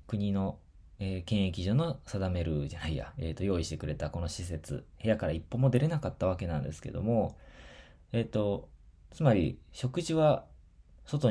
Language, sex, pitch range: Japanese, male, 80-110 Hz